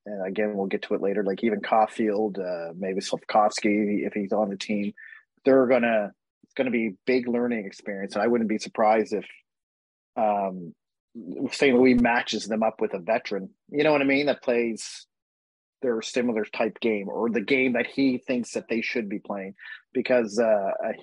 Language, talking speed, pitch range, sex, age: English, 190 wpm, 105-130 Hz, male, 30-49